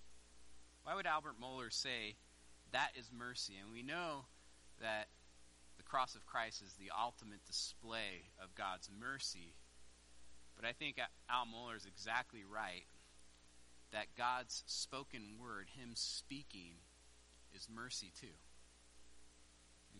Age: 30-49